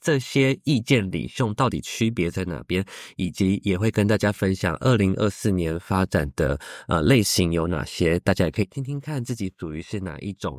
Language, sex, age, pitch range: Chinese, male, 20-39, 90-115 Hz